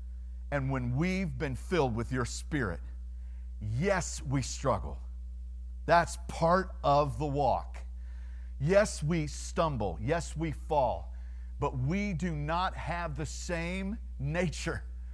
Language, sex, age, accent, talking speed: English, male, 50-69, American, 120 wpm